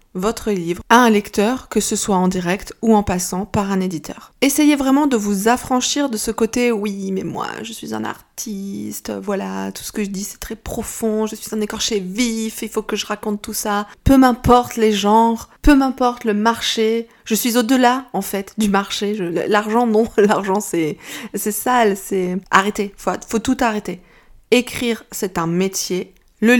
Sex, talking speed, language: female, 195 wpm, French